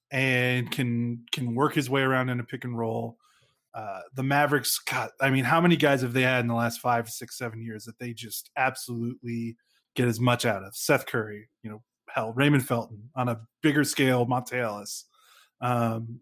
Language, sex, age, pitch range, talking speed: English, male, 20-39, 120-155 Hz, 200 wpm